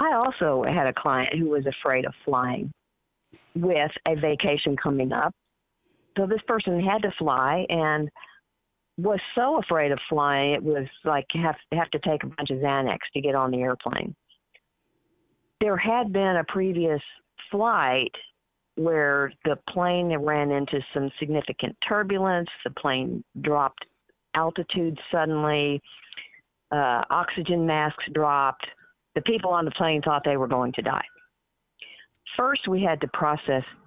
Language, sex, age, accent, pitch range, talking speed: English, female, 50-69, American, 140-175 Hz, 145 wpm